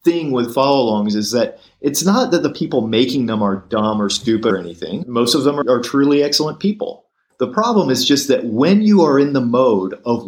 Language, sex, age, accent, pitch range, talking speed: English, male, 40-59, American, 110-145 Hz, 220 wpm